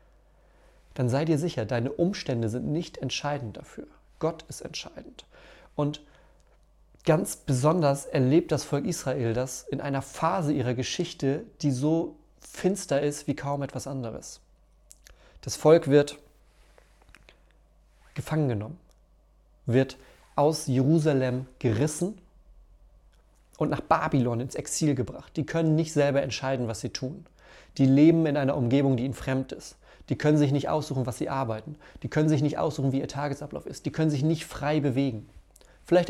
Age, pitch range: 30-49, 130-155 Hz